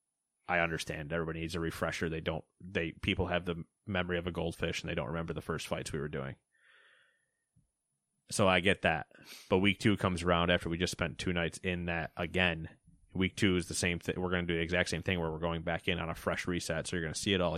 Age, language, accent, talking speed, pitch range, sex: 30-49, English, American, 255 wpm, 85-105 Hz, male